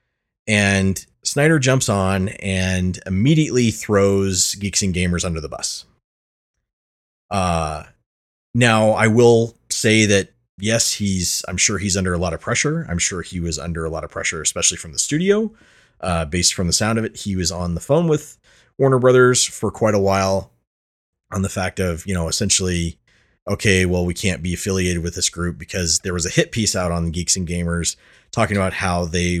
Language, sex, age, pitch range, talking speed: English, male, 30-49, 85-115 Hz, 190 wpm